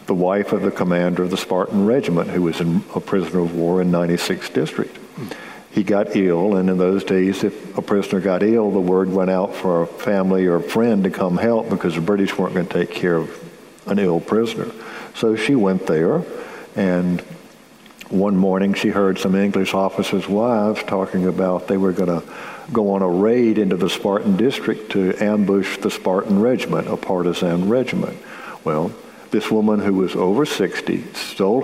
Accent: American